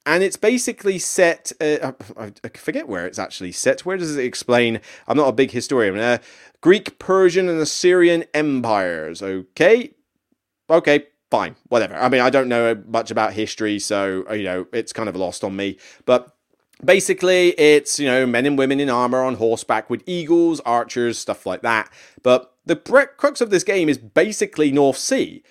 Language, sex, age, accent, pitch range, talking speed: English, male, 30-49, British, 115-165 Hz, 175 wpm